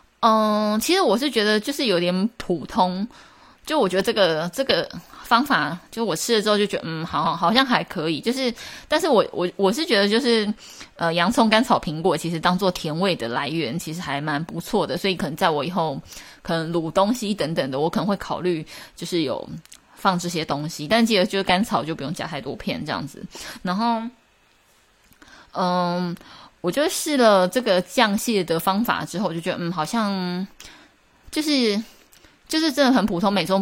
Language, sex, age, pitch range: Chinese, female, 20-39, 165-220 Hz